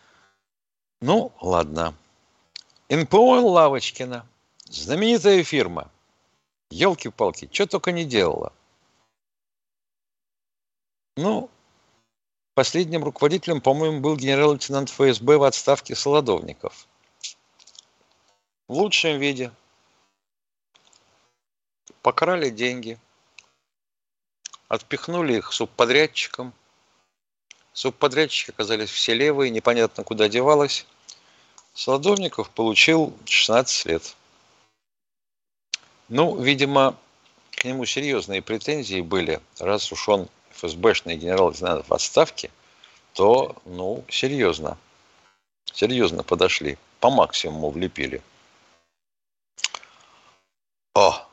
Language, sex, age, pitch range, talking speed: Russian, male, 50-69, 95-140 Hz, 75 wpm